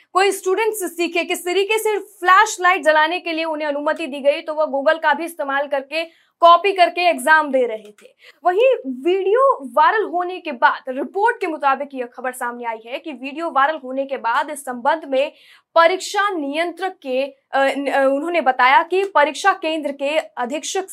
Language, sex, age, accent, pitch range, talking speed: Hindi, female, 20-39, native, 275-360 Hz, 170 wpm